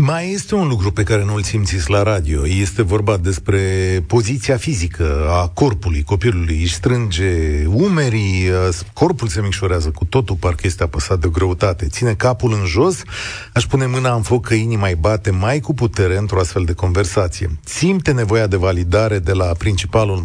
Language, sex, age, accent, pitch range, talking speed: Romanian, male, 40-59, native, 95-125 Hz, 170 wpm